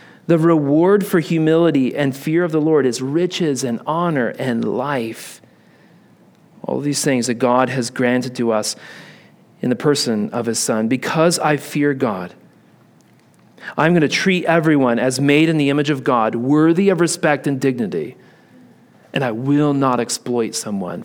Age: 40-59